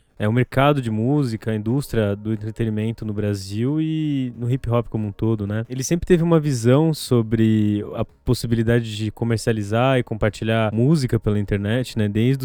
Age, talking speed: 20-39, 175 wpm